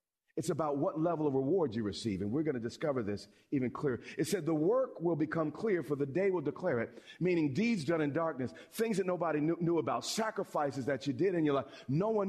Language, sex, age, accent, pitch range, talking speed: English, male, 40-59, American, 145-210 Hz, 240 wpm